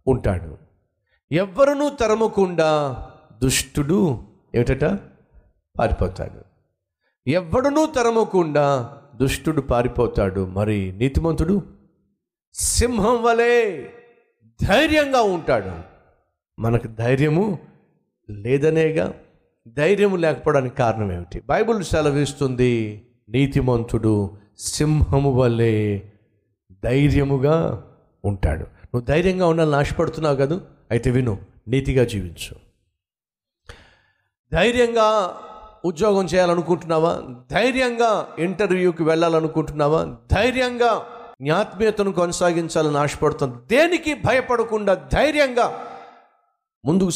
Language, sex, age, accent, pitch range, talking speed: Telugu, male, 50-69, native, 120-200 Hz, 65 wpm